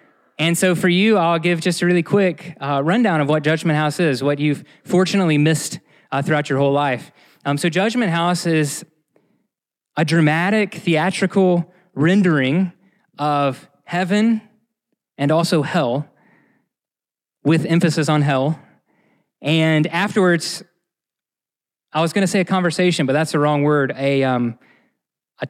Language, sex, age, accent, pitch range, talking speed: English, male, 20-39, American, 150-180 Hz, 140 wpm